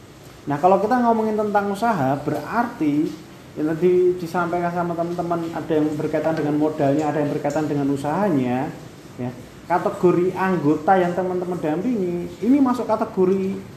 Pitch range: 155-195 Hz